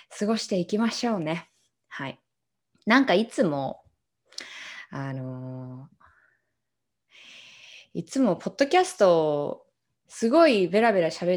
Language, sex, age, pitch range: Japanese, female, 20-39, 165-245 Hz